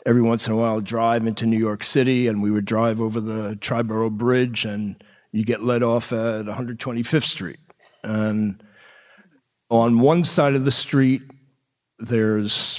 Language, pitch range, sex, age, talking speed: English, 110-135 Hz, male, 50-69, 165 wpm